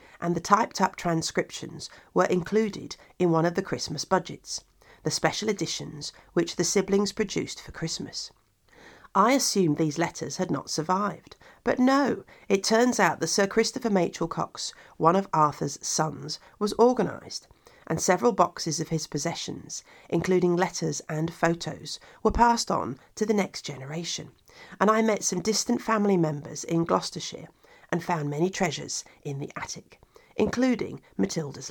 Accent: British